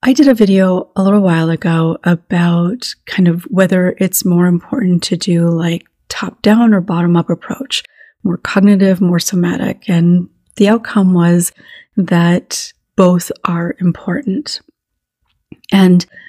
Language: English